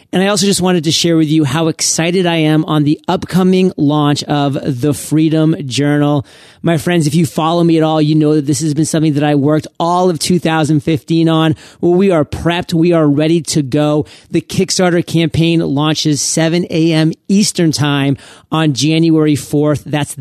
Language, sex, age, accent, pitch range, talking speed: English, male, 30-49, American, 150-175 Hz, 190 wpm